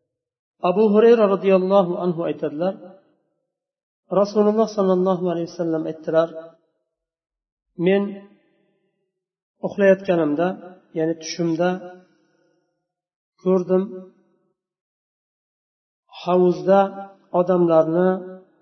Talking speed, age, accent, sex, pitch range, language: 60 wpm, 50-69, Turkish, male, 165-195 Hz, Russian